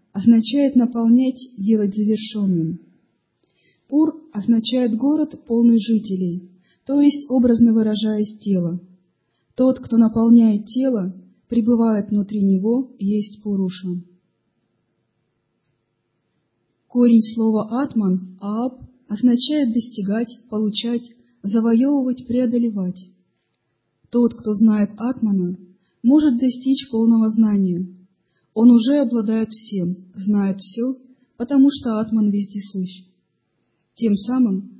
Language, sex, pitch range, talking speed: Russian, female, 190-245 Hz, 90 wpm